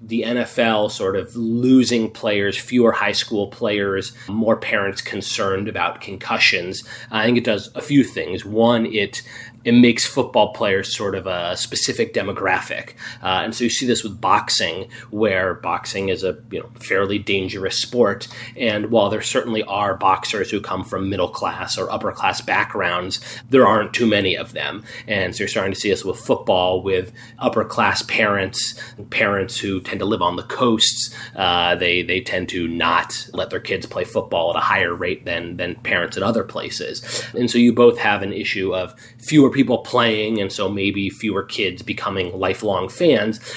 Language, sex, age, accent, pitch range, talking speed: English, male, 30-49, American, 95-120 Hz, 180 wpm